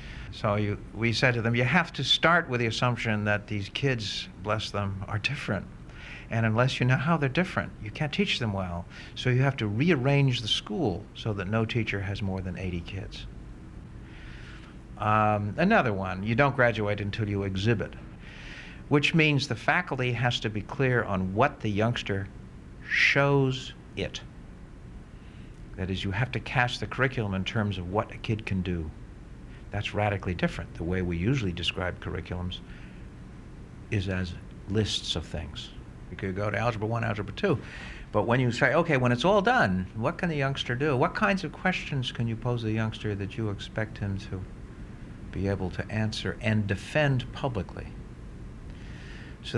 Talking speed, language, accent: 175 wpm, English, American